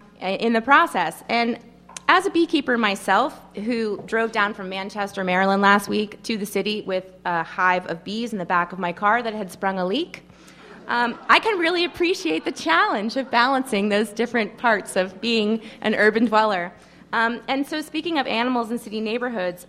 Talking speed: 185 wpm